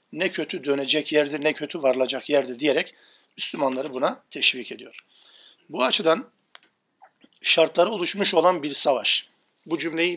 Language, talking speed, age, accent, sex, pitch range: Turkish, 130 wpm, 50-69, native, male, 150-180 Hz